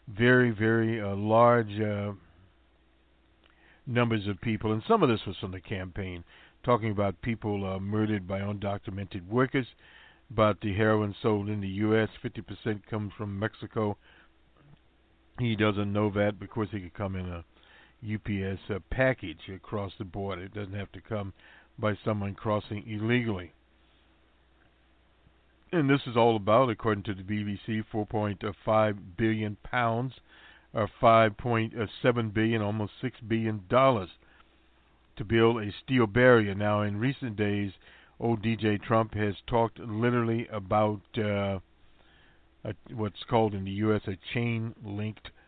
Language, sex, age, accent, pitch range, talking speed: English, male, 50-69, American, 95-115 Hz, 135 wpm